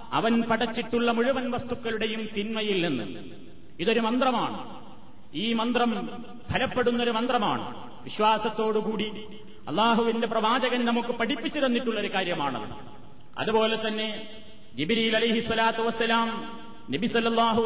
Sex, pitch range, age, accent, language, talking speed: male, 220-230 Hz, 30-49, native, Malayalam, 80 wpm